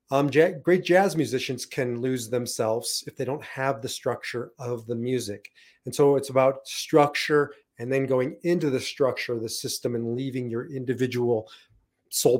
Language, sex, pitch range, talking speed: English, male, 120-145 Hz, 170 wpm